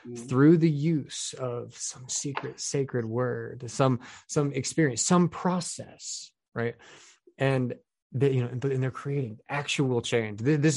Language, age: English, 20-39